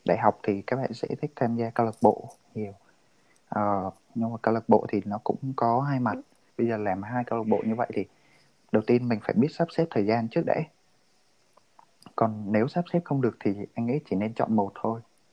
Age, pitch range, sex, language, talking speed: 20-39, 105-130 Hz, male, Vietnamese, 235 wpm